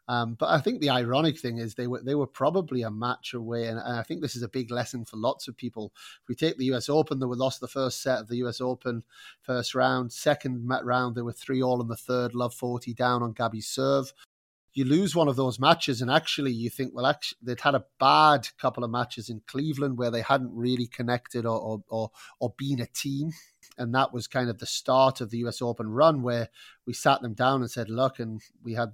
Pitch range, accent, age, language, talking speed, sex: 115-130 Hz, British, 30-49, English, 245 wpm, male